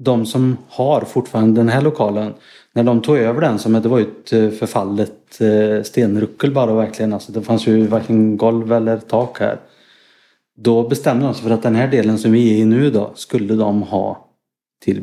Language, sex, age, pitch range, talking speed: Swedish, male, 30-49, 110-125 Hz, 195 wpm